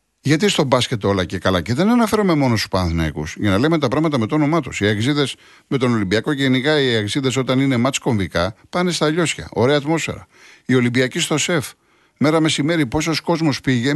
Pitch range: 125-175 Hz